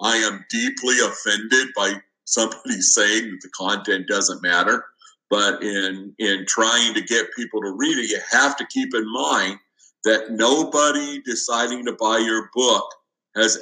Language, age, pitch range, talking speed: English, 50-69, 95-120 Hz, 160 wpm